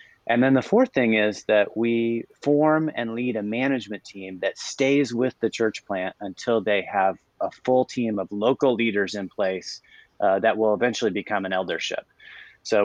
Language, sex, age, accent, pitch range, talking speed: English, male, 30-49, American, 105-125 Hz, 180 wpm